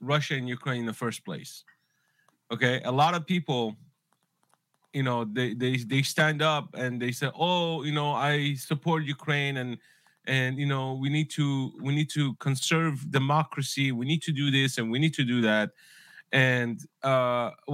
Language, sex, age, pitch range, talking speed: English, male, 30-49, 130-165 Hz, 180 wpm